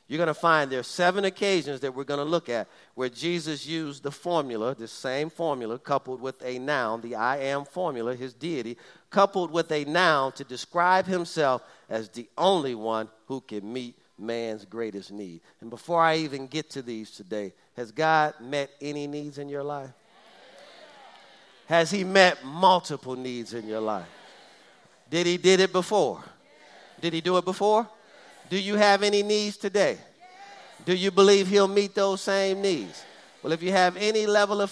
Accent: American